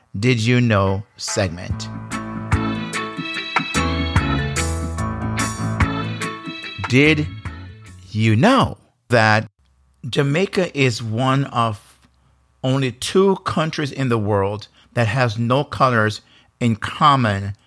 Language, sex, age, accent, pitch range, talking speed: English, male, 50-69, American, 105-130 Hz, 80 wpm